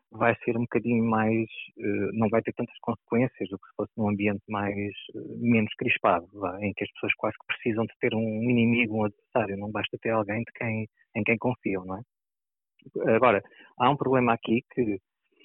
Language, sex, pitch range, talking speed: Portuguese, male, 100-120 Hz, 190 wpm